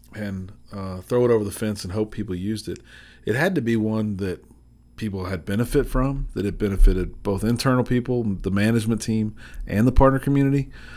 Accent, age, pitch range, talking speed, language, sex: American, 40-59, 105-125 Hz, 190 wpm, English, male